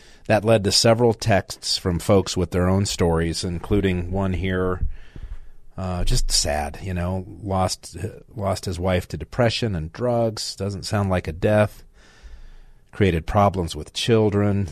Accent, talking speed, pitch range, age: American, 145 wpm, 90-105 Hz, 40-59